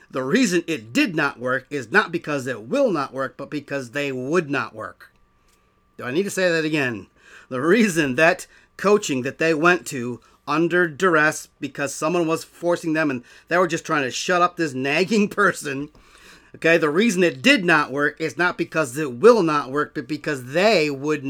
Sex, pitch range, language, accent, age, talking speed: male, 135-175 Hz, English, American, 40-59, 195 wpm